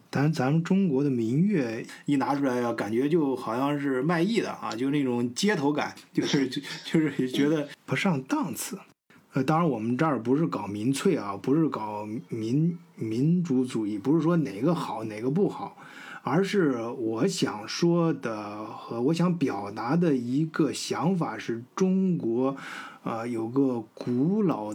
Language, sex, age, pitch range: Chinese, male, 20-39, 120-170 Hz